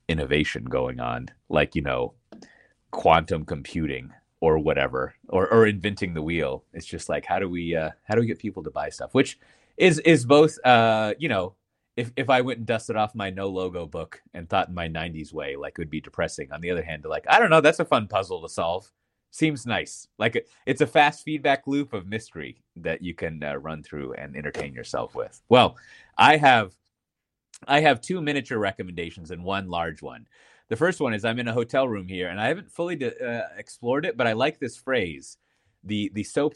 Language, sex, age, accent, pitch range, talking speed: English, male, 30-49, American, 85-120 Hz, 220 wpm